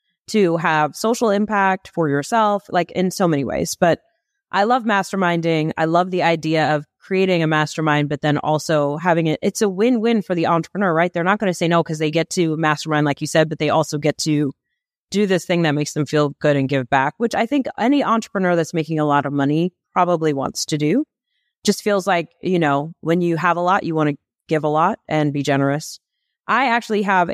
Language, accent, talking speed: English, American, 225 wpm